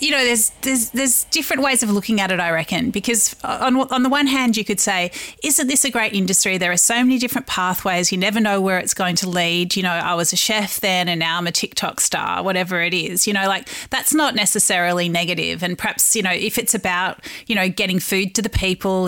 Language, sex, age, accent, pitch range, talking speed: English, female, 30-49, Australian, 175-220 Hz, 245 wpm